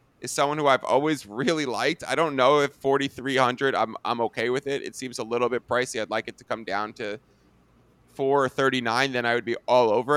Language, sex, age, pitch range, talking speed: English, male, 20-39, 130-150 Hz, 225 wpm